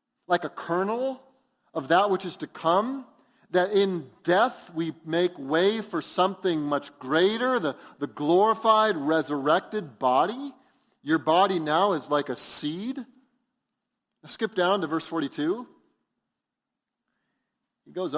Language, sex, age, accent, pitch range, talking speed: English, male, 40-59, American, 150-235 Hz, 125 wpm